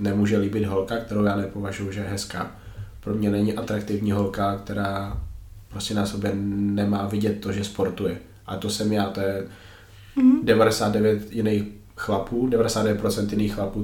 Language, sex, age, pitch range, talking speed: Slovak, male, 20-39, 100-105 Hz, 150 wpm